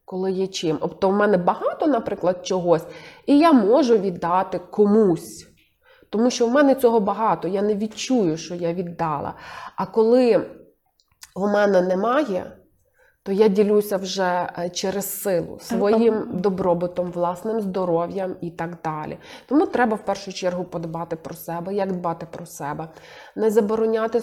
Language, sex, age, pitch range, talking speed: Ukrainian, female, 30-49, 185-225 Hz, 145 wpm